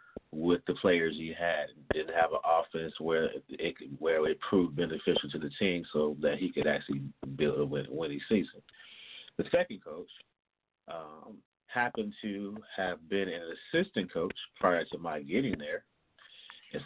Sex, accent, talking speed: male, American, 155 wpm